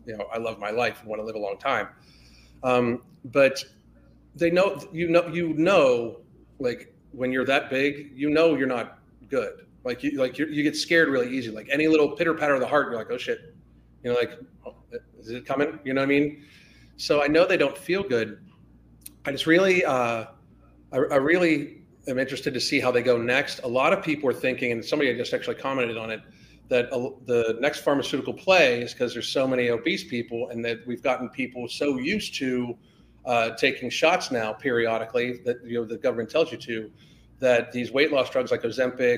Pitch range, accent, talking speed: 110-145 Hz, American, 210 wpm